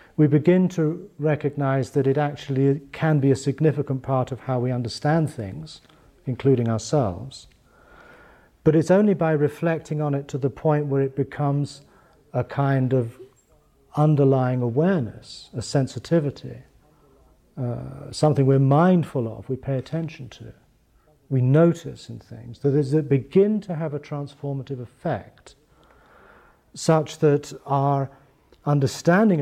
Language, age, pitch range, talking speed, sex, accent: English, 40-59, 120-150 Hz, 135 wpm, male, British